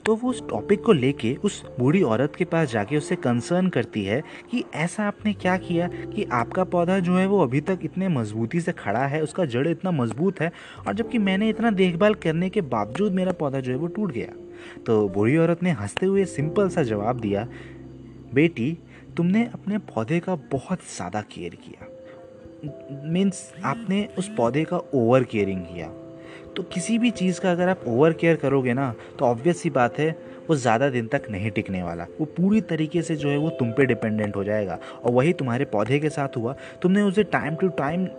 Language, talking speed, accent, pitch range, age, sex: Hindi, 200 wpm, native, 125-185 Hz, 30-49, male